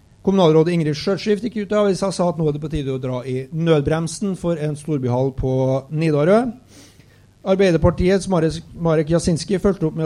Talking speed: 150 wpm